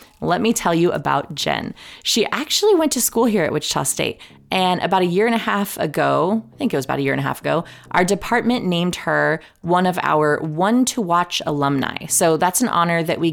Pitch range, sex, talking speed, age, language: 155-200 Hz, female, 230 wpm, 20-39, English